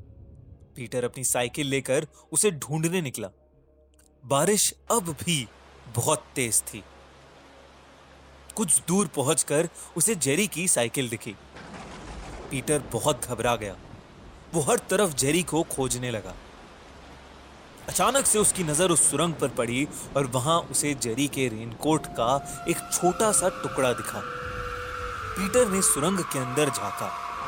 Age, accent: 30-49, native